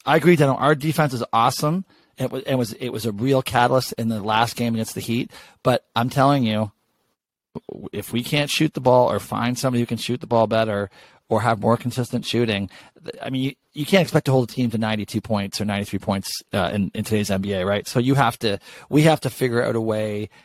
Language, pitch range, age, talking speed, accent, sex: English, 105-130 Hz, 40-59, 230 wpm, American, male